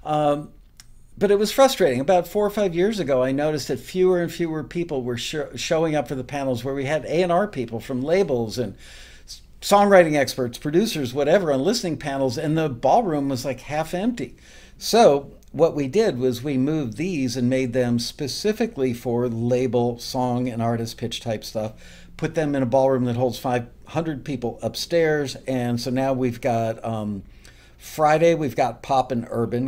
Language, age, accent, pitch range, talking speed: English, 50-69, American, 120-150 Hz, 180 wpm